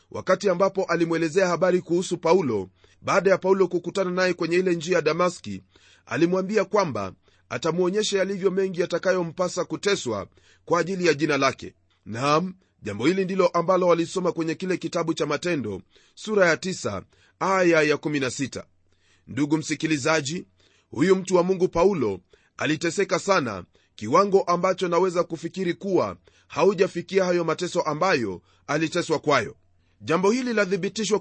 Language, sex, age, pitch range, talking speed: Swahili, male, 30-49, 150-190 Hz, 130 wpm